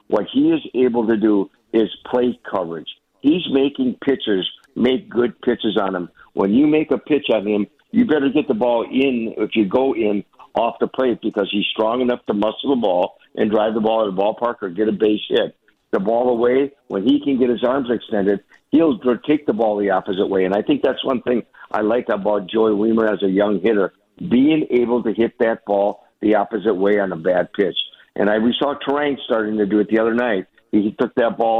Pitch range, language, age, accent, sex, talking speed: 105-125 Hz, English, 50-69, American, male, 225 wpm